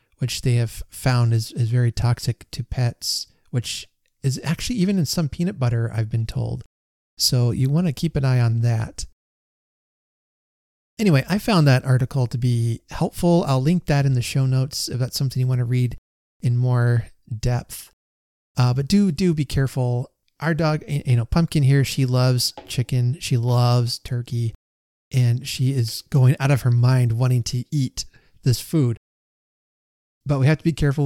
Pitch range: 120-140 Hz